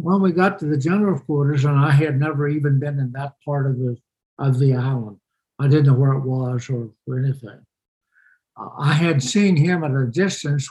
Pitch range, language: 130-155 Hz, English